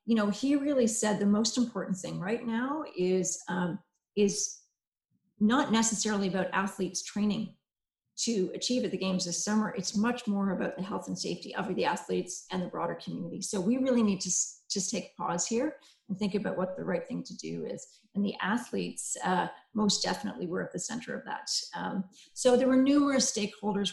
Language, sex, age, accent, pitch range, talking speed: English, female, 40-59, American, 185-225 Hz, 195 wpm